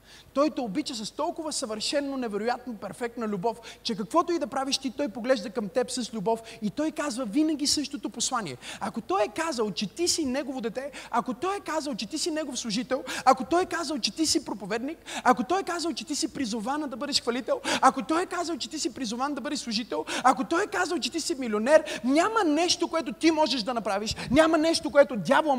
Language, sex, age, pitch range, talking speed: Bulgarian, male, 30-49, 225-305 Hz, 225 wpm